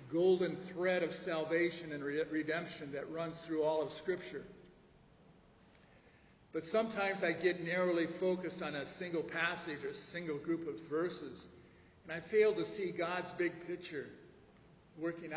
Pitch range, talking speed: 155-180 Hz, 145 wpm